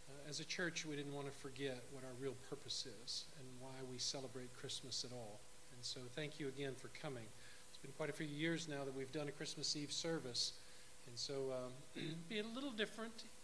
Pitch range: 125-150 Hz